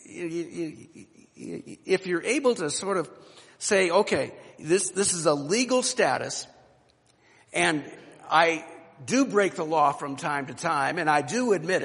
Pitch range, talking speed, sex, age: 180-245 Hz, 140 wpm, male, 60-79